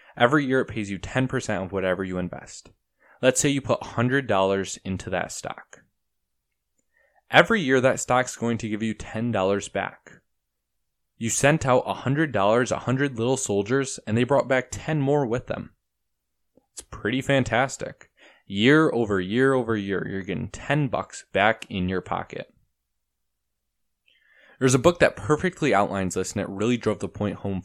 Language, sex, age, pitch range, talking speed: English, male, 20-39, 100-135 Hz, 160 wpm